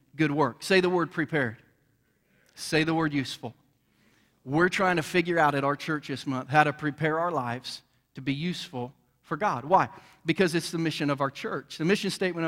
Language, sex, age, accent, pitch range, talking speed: English, male, 40-59, American, 150-185 Hz, 195 wpm